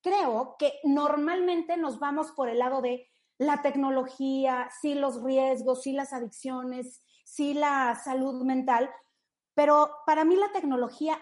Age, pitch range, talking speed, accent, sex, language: 30-49, 230-285 Hz, 140 wpm, Mexican, female, Spanish